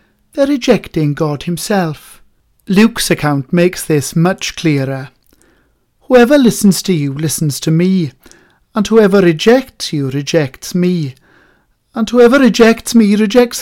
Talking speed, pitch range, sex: 125 wpm, 160-235 Hz, male